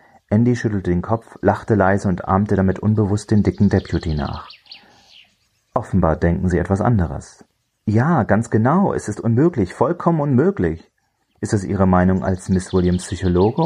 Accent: German